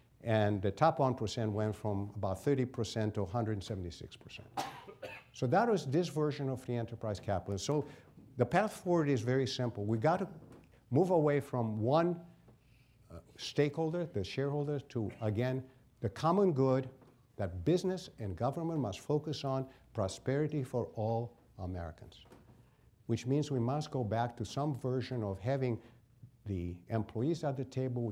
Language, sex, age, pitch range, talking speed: English, male, 60-79, 115-150 Hz, 145 wpm